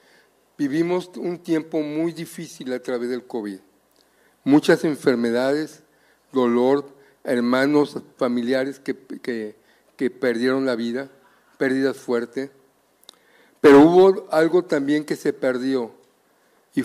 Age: 50-69